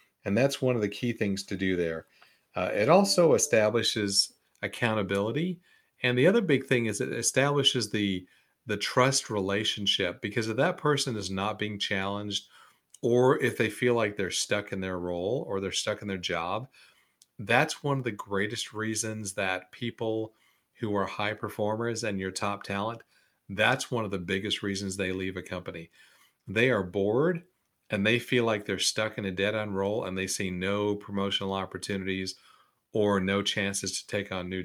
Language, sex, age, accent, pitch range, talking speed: English, male, 40-59, American, 95-115 Hz, 180 wpm